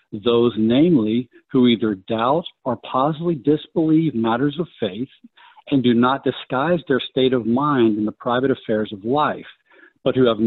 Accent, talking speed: American, 160 wpm